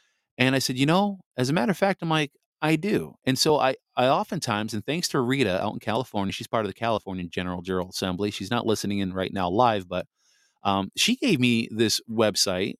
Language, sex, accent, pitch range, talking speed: English, male, American, 105-135 Hz, 225 wpm